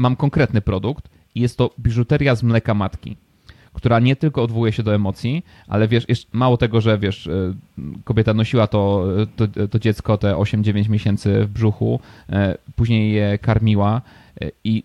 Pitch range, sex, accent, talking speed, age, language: 105-115 Hz, male, native, 155 wpm, 30-49, Polish